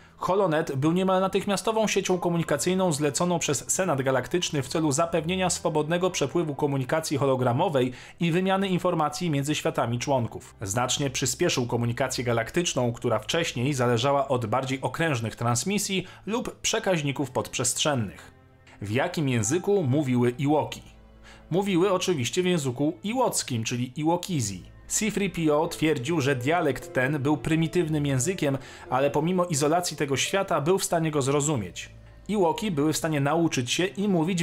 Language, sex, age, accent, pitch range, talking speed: Polish, male, 40-59, native, 125-175 Hz, 130 wpm